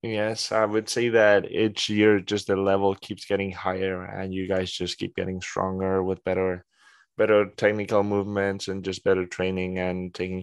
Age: 10-29